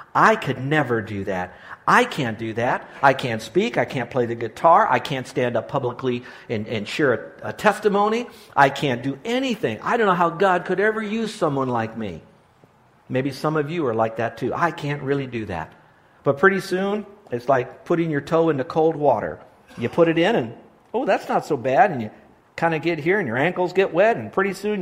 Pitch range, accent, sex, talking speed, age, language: 120-175 Hz, American, male, 220 wpm, 50-69, English